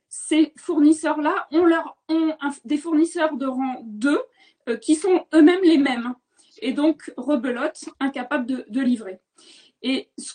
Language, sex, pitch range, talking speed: French, female, 245-310 Hz, 150 wpm